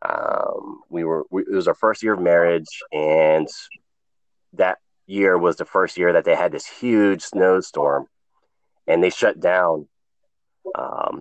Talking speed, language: 150 wpm, English